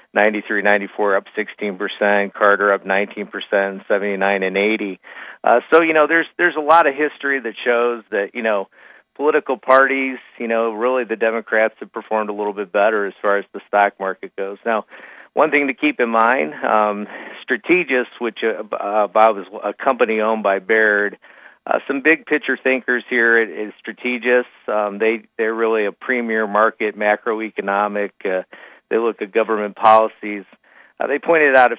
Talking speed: 180 wpm